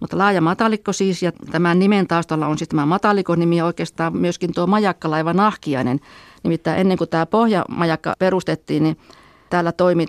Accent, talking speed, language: native, 160 wpm, Finnish